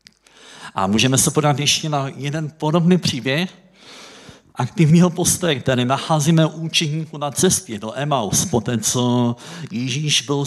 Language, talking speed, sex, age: Czech, 130 wpm, male, 50-69